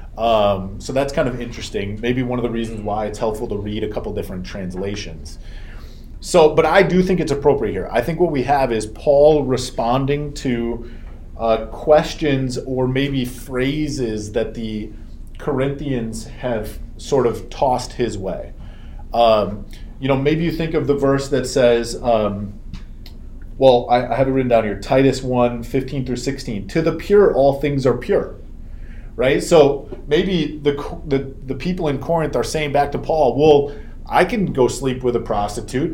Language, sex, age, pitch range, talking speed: English, male, 30-49, 115-145 Hz, 175 wpm